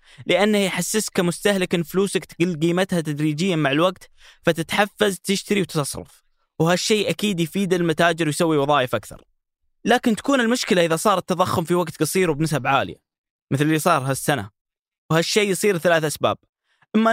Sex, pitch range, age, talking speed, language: male, 145-185 Hz, 20-39, 140 wpm, Arabic